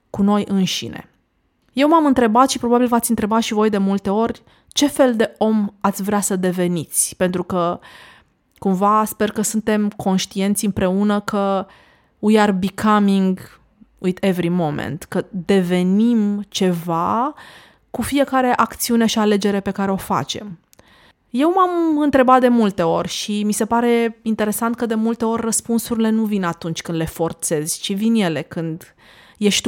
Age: 20-39